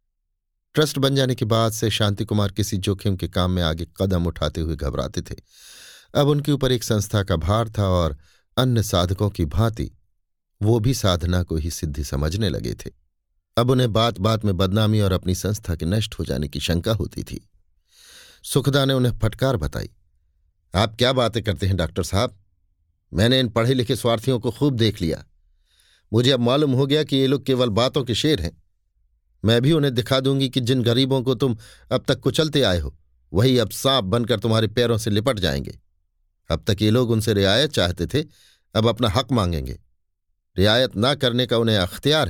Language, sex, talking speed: Hindi, male, 190 wpm